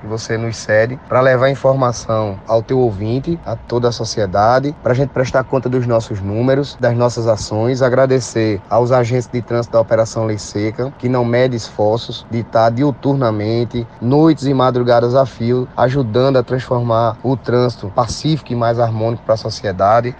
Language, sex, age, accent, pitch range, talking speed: Portuguese, male, 20-39, Brazilian, 115-135 Hz, 170 wpm